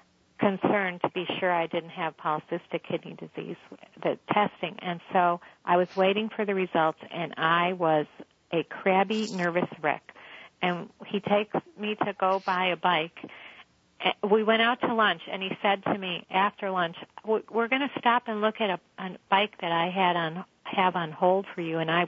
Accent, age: American, 50-69